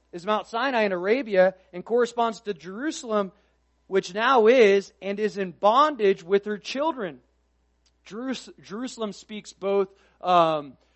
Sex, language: male, English